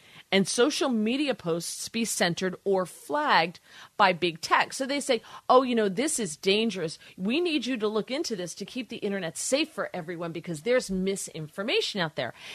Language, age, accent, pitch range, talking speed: English, 40-59, American, 170-215 Hz, 185 wpm